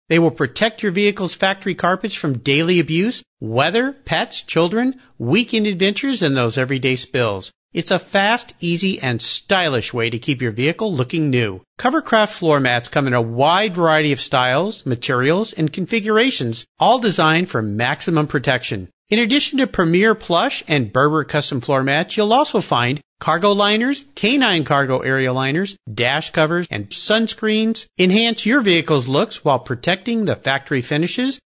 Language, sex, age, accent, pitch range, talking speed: English, male, 50-69, American, 130-210 Hz, 155 wpm